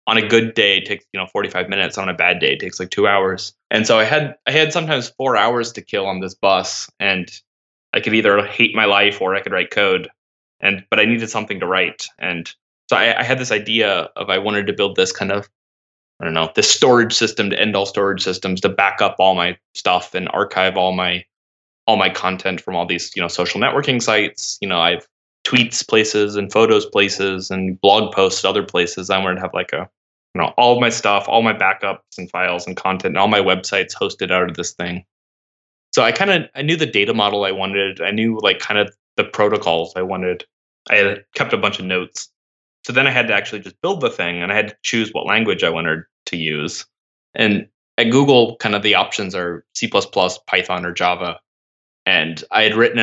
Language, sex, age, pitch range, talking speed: English, male, 20-39, 90-110 Hz, 230 wpm